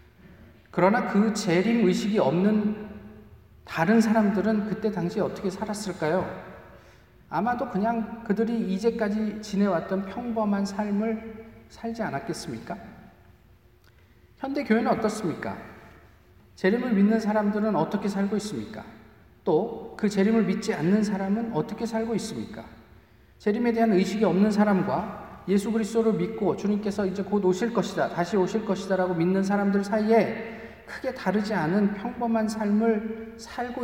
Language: Korean